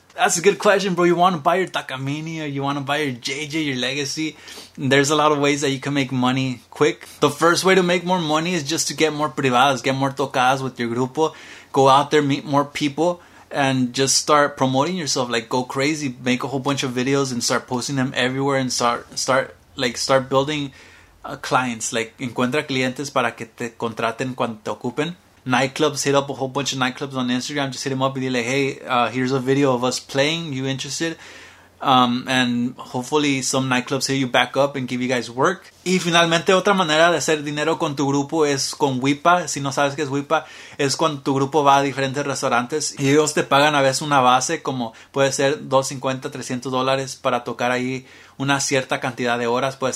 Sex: male